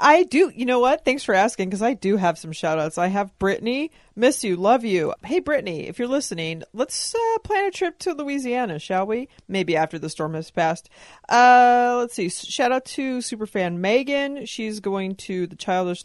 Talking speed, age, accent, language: 210 wpm, 40-59, American, English